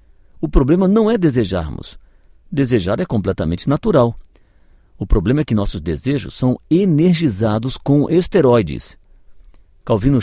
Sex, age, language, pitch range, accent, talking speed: male, 50-69, Portuguese, 95-145 Hz, Brazilian, 115 wpm